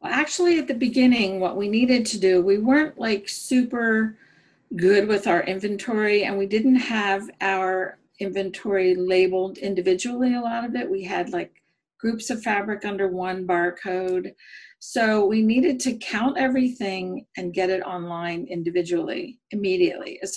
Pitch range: 190-240 Hz